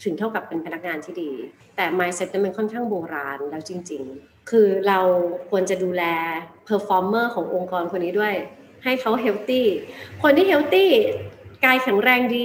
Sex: female